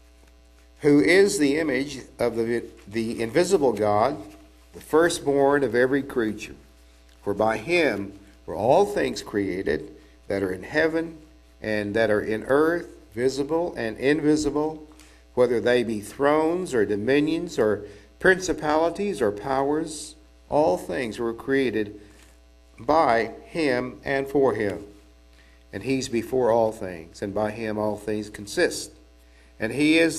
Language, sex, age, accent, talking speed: English, male, 50-69, American, 130 wpm